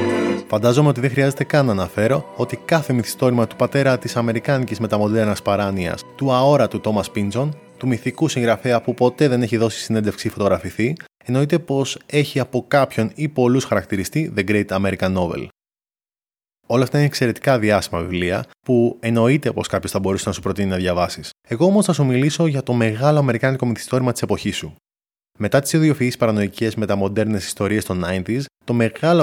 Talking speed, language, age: 170 wpm, Greek, 20-39